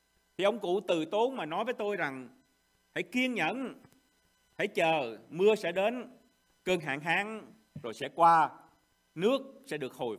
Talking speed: 160 wpm